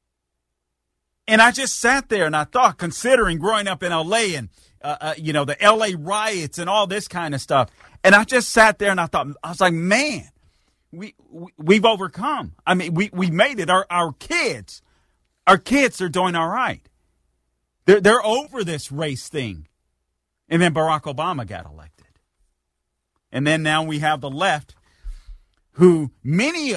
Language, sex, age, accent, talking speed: English, male, 40-59, American, 175 wpm